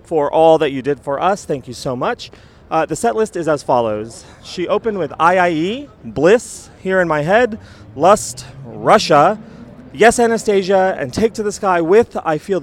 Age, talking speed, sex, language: 30-49, 185 wpm, male, English